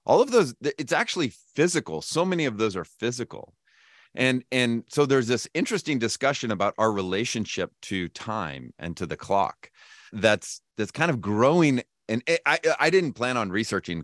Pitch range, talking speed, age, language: 95-130 Hz, 170 wpm, 30-49, English